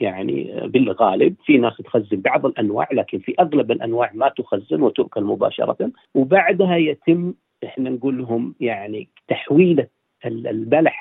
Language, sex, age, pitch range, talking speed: Arabic, male, 40-59, 115-155 Hz, 125 wpm